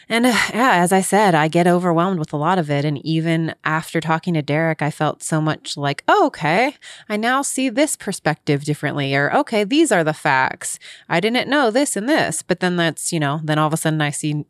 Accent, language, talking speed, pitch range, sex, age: American, English, 230 wpm, 150-210 Hz, female, 20-39